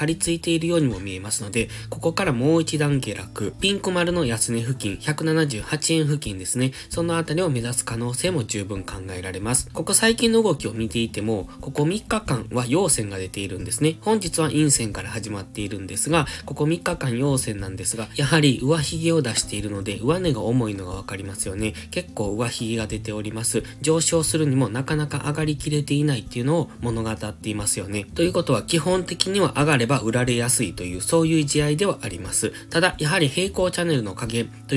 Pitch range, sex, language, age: 110-165 Hz, male, Japanese, 20-39